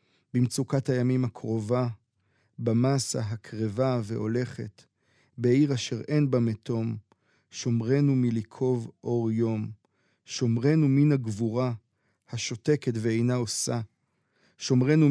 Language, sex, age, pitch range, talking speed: Hebrew, male, 40-59, 115-140 Hz, 85 wpm